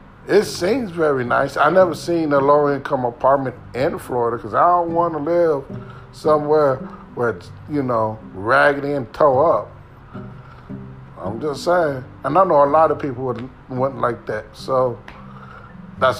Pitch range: 120-165 Hz